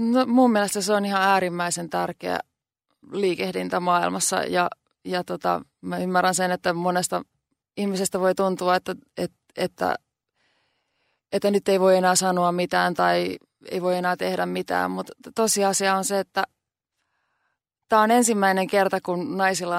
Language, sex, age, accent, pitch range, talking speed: Finnish, female, 20-39, native, 175-200 Hz, 145 wpm